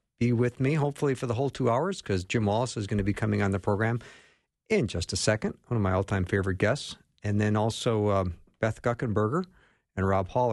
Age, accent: 50-69, American